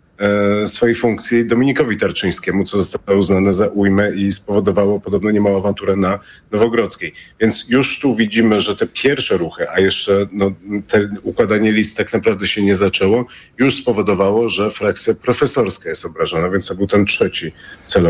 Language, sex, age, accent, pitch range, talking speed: Polish, male, 40-59, native, 100-125 Hz, 160 wpm